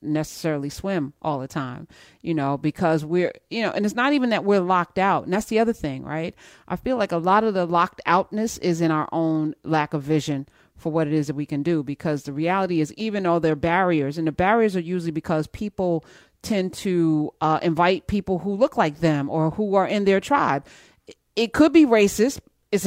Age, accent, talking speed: 40-59, American, 225 wpm